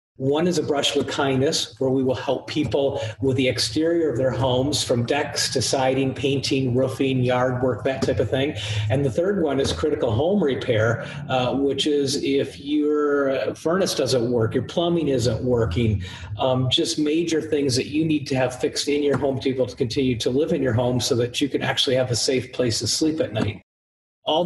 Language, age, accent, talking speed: English, 40-59, American, 210 wpm